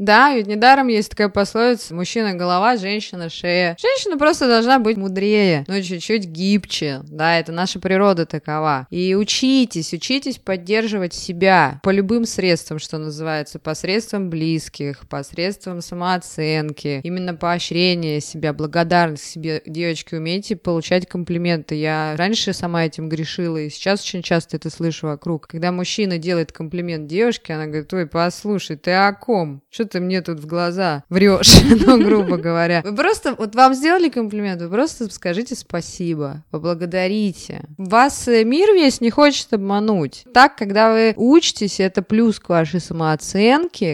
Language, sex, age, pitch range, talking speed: Russian, female, 20-39, 160-215 Hz, 145 wpm